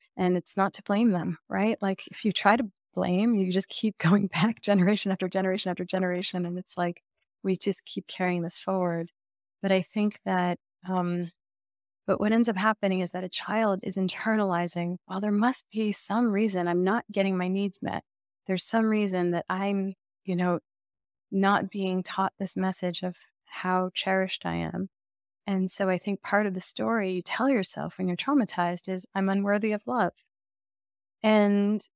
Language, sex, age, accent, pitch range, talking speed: English, female, 20-39, American, 180-210 Hz, 180 wpm